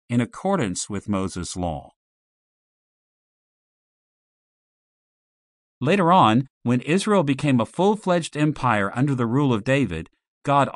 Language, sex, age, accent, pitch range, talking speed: English, male, 40-59, American, 105-145 Hz, 105 wpm